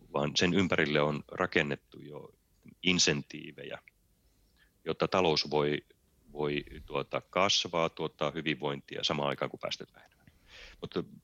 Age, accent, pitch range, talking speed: 30-49, native, 70-85 Hz, 105 wpm